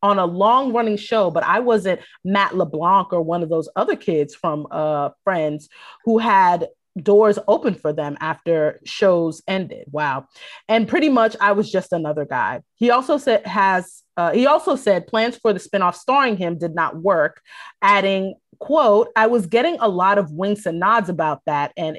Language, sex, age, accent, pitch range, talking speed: English, female, 30-49, American, 170-225 Hz, 185 wpm